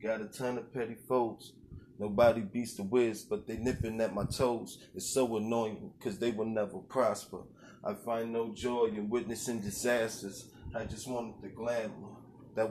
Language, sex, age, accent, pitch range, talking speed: English, male, 20-39, American, 110-120 Hz, 175 wpm